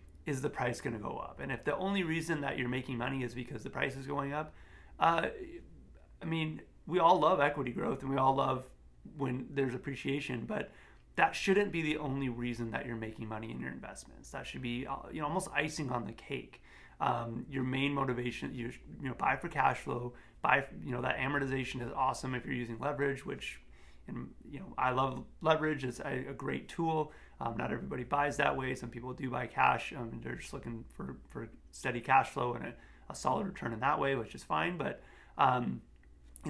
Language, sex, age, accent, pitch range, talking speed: English, male, 30-49, American, 120-140 Hz, 215 wpm